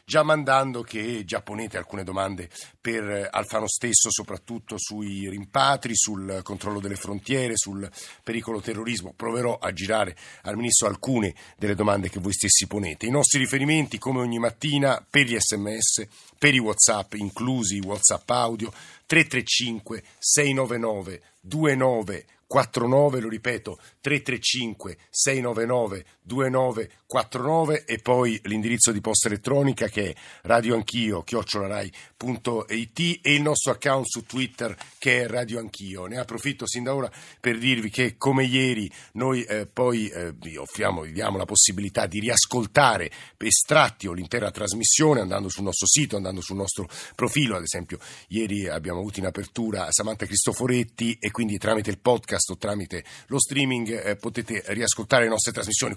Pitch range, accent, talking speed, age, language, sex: 100-125 Hz, native, 140 wpm, 50-69, Italian, male